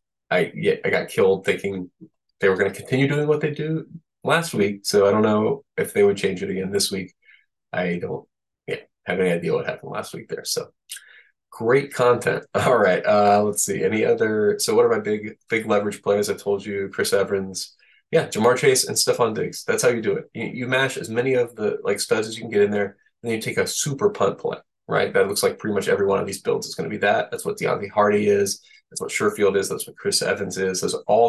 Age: 20-39